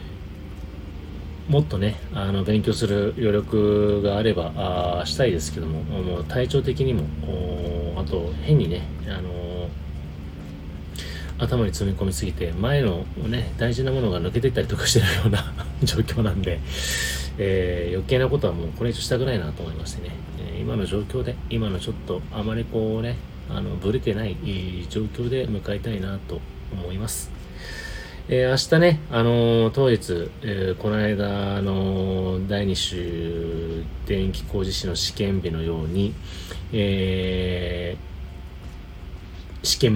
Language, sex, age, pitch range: Japanese, male, 30-49, 80-105 Hz